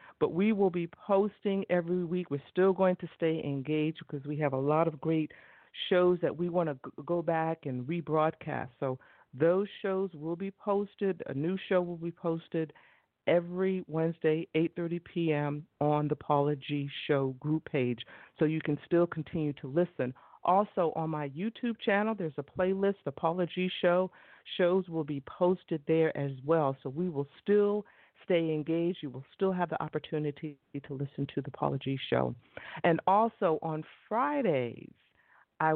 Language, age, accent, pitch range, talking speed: English, 50-69, American, 140-180 Hz, 165 wpm